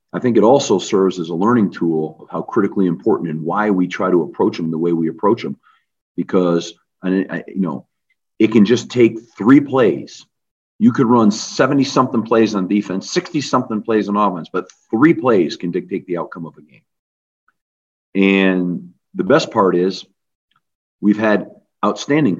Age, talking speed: 50-69, 170 wpm